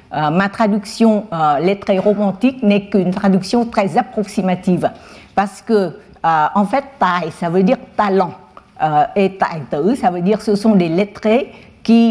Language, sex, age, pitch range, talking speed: French, female, 60-79, 180-220 Hz, 165 wpm